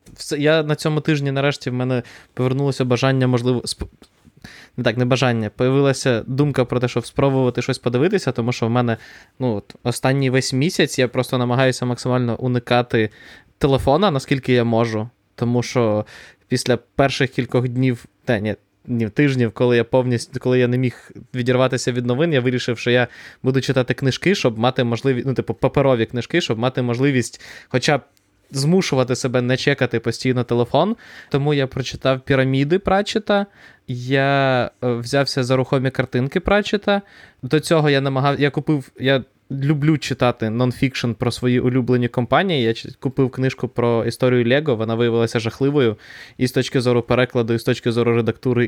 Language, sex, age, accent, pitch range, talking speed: Ukrainian, male, 20-39, native, 120-135 Hz, 160 wpm